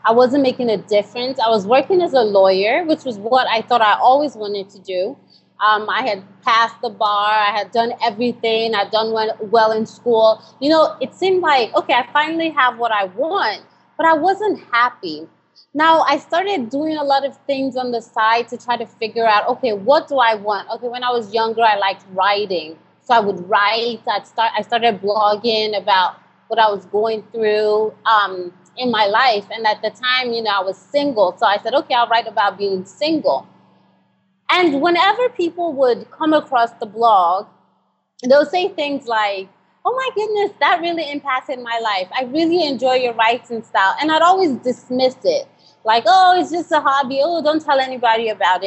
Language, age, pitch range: English, 30-49, 215-285 Hz